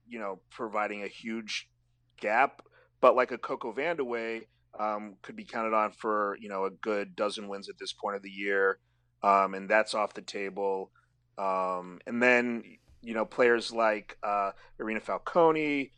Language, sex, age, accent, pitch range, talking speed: English, male, 30-49, American, 100-120 Hz, 170 wpm